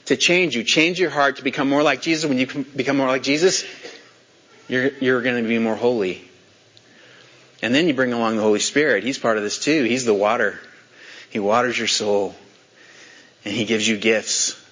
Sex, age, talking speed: male, 30-49, 200 wpm